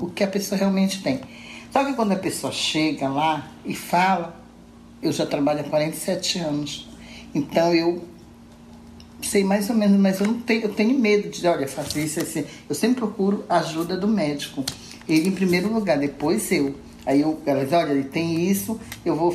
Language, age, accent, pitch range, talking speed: Portuguese, 60-79, Brazilian, 150-200 Hz, 195 wpm